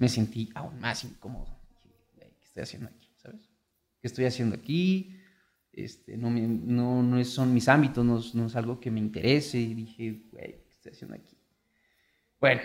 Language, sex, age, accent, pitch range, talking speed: Spanish, male, 30-49, Mexican, 115-140 Hz, 180 wpm